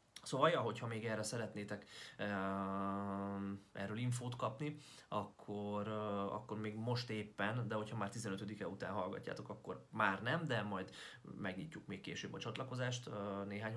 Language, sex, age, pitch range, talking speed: Hungarian, male, 30-49, 100-120 Hz, 130 wpm